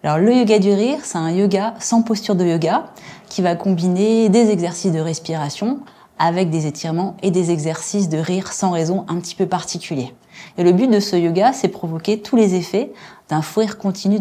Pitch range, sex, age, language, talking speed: 165-205 Hz, female, 20-39, French, 205 wpm